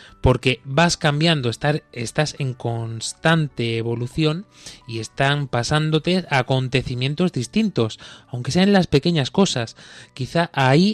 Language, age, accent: Spanish, 20-39, Spanish